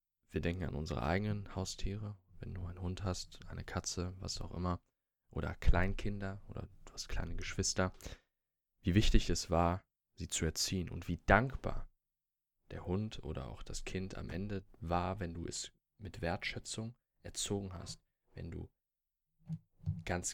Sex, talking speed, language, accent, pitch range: male, 155 wpm, German, German, 85-100 Hz